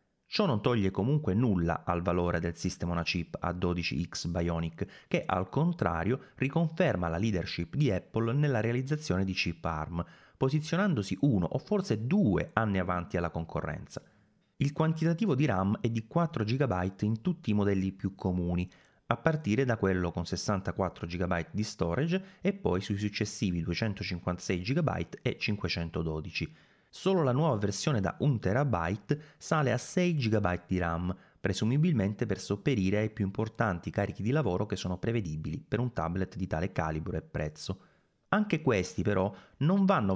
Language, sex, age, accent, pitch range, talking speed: Italian, male, 30-49, native, 90-135 Hz, 150 wpm